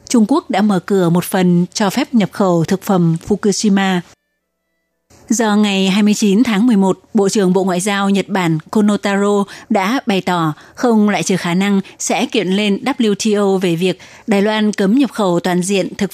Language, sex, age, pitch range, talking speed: Vietnamese, female, 20-39, 185-215 Hz, 180 wpm